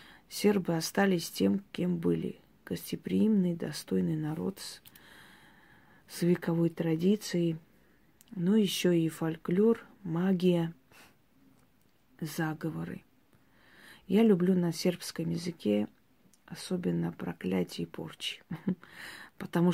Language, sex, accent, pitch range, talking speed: Russian, female, native, 150-185 Hz, 85 wpm